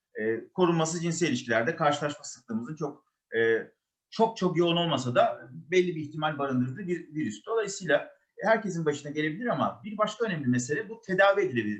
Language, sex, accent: Turkish, male, native